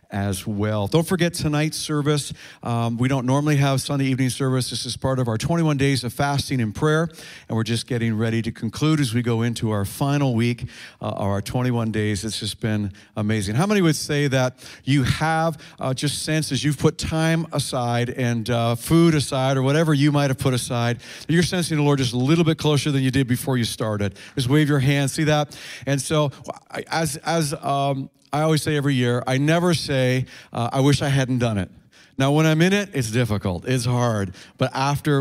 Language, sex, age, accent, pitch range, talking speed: English, male, 50-69, American, 120-150 Hz, 210 wpm